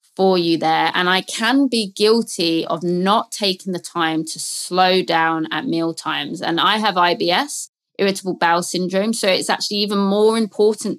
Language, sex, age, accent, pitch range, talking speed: English, female, 20-39, British, 175-225 Hz, 165 wpm